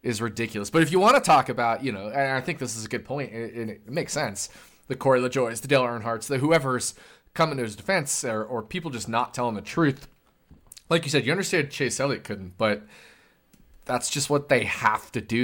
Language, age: English, 20-39